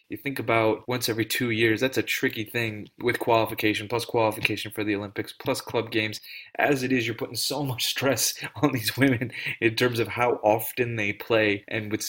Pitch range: 110-130 Hz